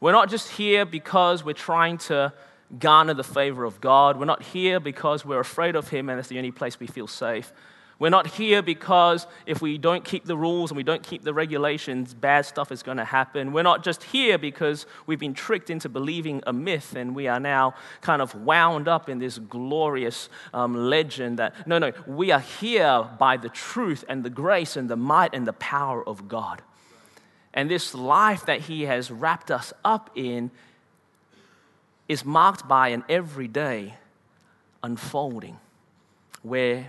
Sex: male